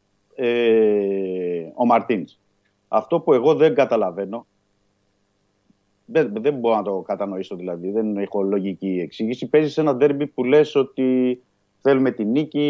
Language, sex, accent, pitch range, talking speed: Greek, male, native, 100-150 Hz, 135 wpm